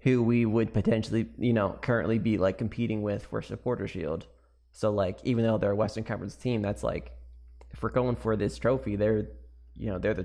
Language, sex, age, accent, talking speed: English, male, 20-39, American, 210 wpm